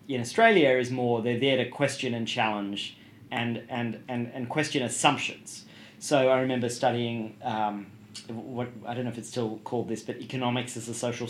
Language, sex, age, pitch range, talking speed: English, male, 30-49, 115-130 Hz, 185 wpm